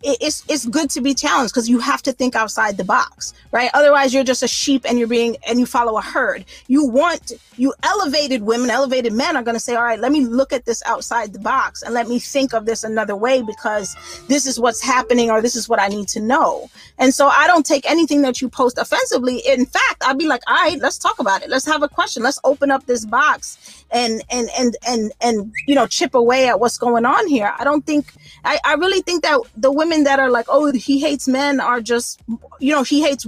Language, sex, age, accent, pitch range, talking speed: English, female, 30-49, American, 240-290 Hz, 245 wpm